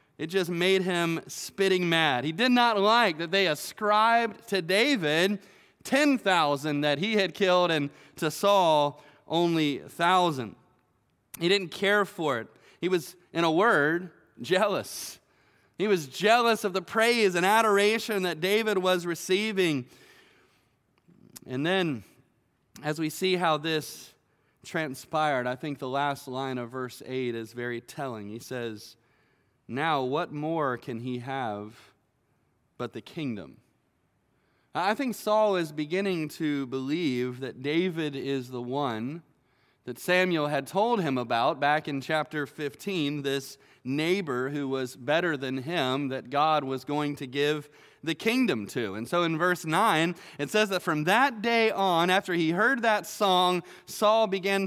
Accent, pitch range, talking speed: American, 140-190 Hz, 150 wpm